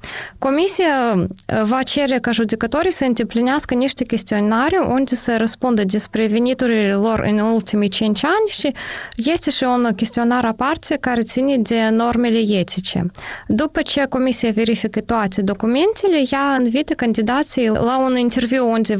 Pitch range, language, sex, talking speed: 220-265 Hz, Romanian, female, 135 wpm